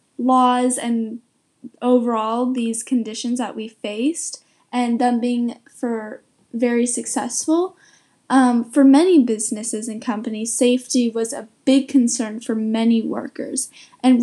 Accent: American